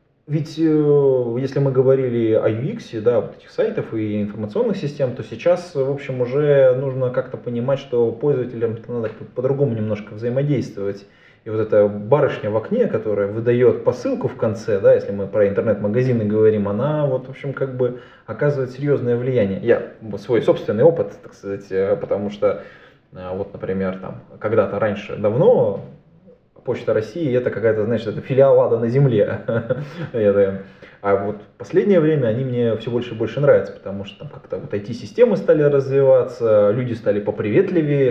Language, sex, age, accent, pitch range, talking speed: Russian, male, 20-39, native, 110-155 Hz, 155 wpm